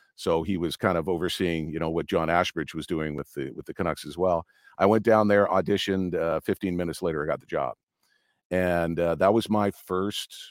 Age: 50-69